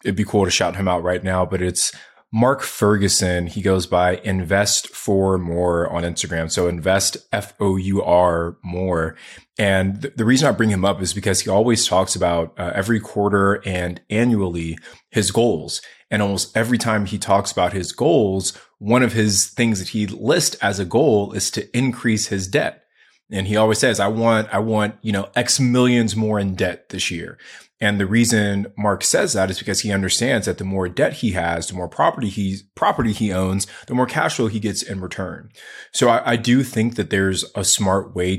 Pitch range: 90-110 Hz